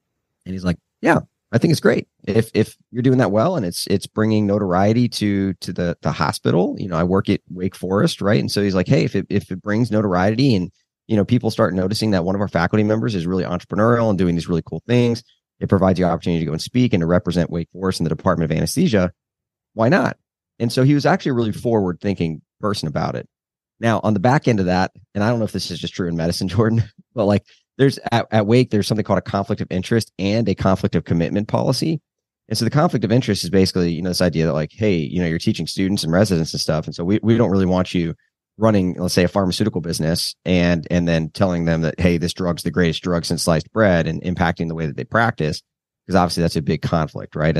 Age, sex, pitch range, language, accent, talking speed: 30-49, male, 85-110 Hz, English, American, 250 wpm